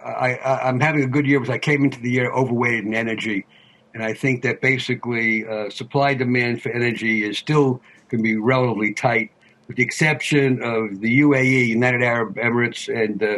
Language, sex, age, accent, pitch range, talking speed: English, male, 60-79, American, 115-135 Hz, 190 wpm